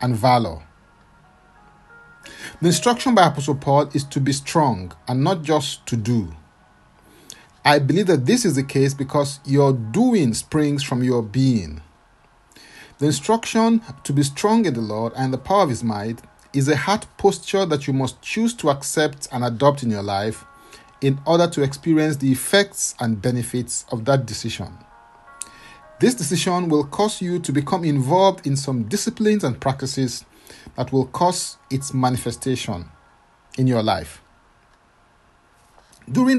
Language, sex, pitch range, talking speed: English, male, 120-170 Hz, 150 wpm